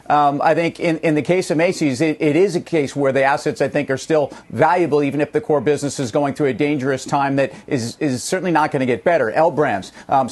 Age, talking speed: 40-59, 260 wpm